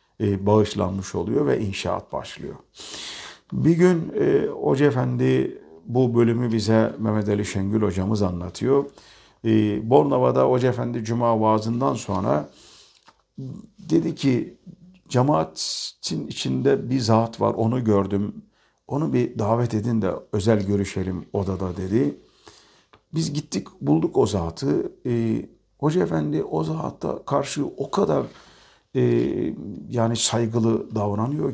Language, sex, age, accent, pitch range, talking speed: Turkish, male, 50-69, native, 100-130 Hz, 115 wpm